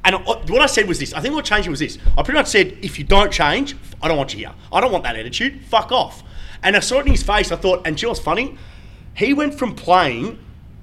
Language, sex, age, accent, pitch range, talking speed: English, male, 30-49, Australian, 145-200 Hz, 275 wpm